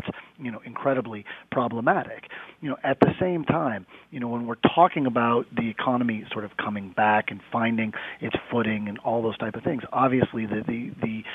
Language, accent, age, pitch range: English, American, 40-59, 115-135 Hz